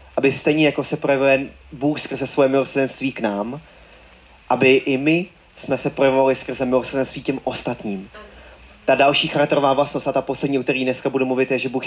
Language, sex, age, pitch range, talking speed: Czech, male, 20-39, 125-140 Hz, 180 wpm